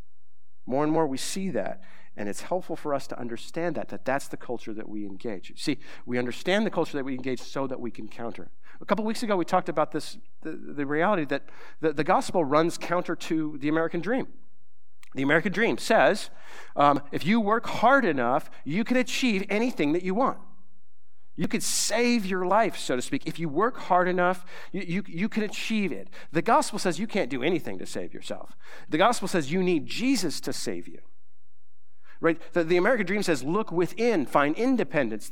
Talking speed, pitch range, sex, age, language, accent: 205 wpm, 135-225 Hz, male, 50-69, English, American